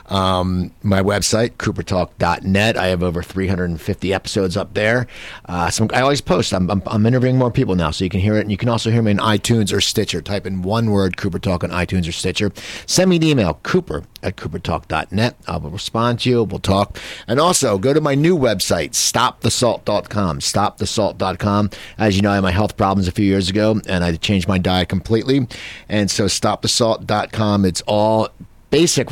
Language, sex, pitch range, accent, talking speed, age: English, male, 95-115 Hz, American, 190 wpm, 50-69